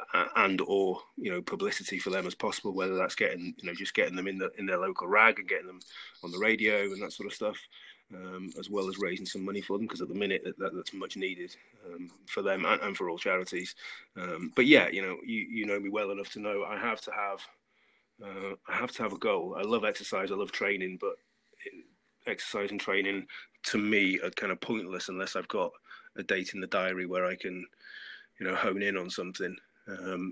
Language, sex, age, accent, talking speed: English, male, 30-49, British, 235 wpm